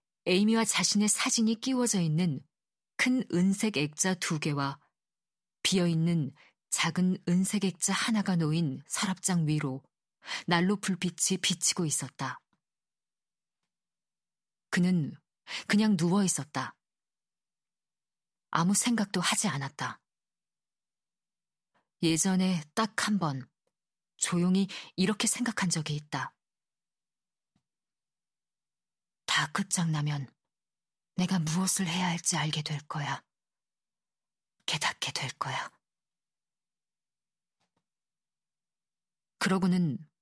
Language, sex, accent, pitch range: Korean, female, native, 160-195 Hz